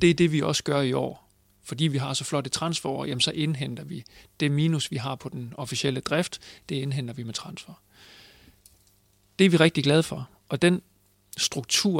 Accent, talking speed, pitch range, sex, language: native, 200 wpm, 125-160 Hz, male, Danish